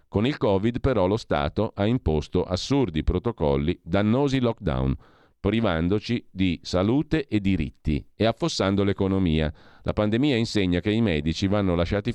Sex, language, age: male, Italian, 40-59